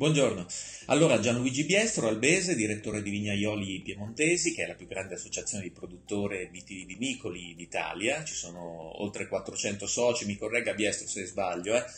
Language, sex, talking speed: Italian, male, 145 wpm